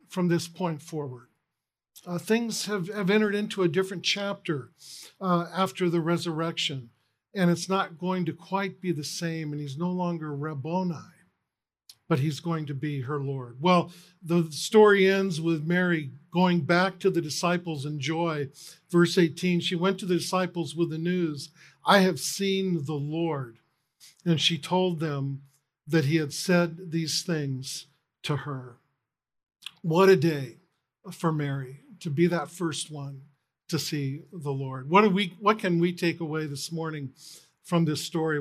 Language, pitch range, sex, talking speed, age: English, 150-175 Hz, male, 160 wpm, 50-69